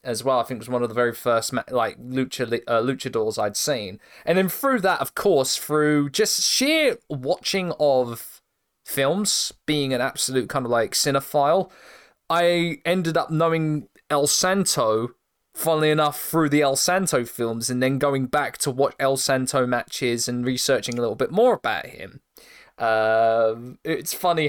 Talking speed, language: 170 wpm, English